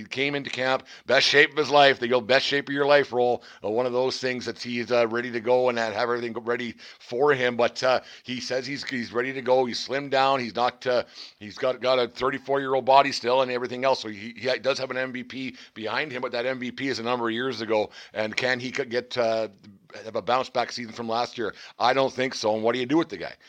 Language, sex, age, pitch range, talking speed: English, male, 50-69, 115-130 Hz, 260 wpm